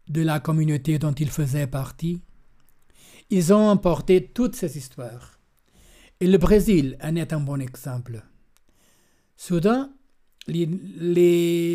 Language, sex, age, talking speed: French, male, 60-79, 125 wpm